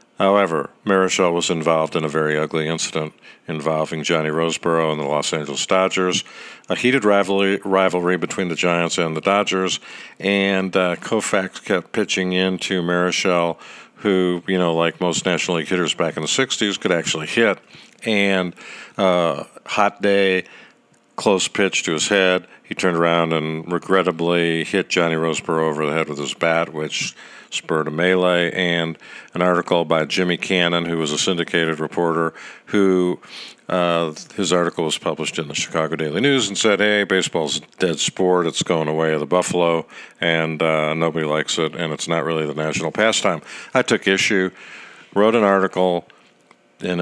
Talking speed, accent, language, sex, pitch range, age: 165 wpm, American, English, male, 80-95 Hz, 50-69